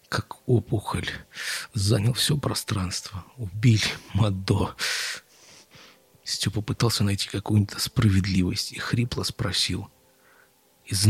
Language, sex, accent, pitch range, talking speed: Russian, male, native, 100-130 Hz, 85 wpm